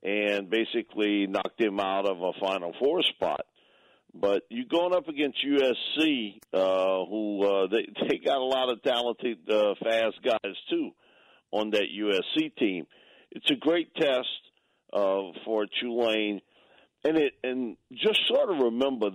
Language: English